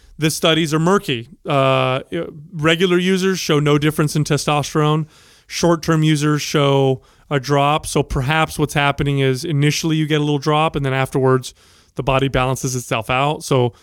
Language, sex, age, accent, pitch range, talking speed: English, male, 30-49, American, 130-155 Hz, 160 wpm